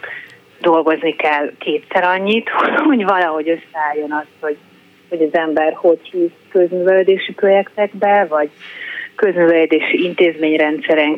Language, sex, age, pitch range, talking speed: Hungarian, female, 30-49, 155-180 Hz, 100 wpm